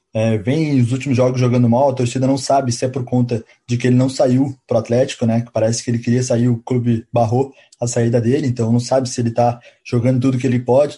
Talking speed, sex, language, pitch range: 250 wpm, male, Portuguese, 120-135 Hz